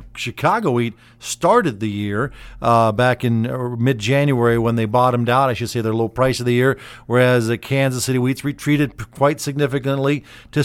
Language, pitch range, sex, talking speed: English, 115-145 Hz, male, 190 wpm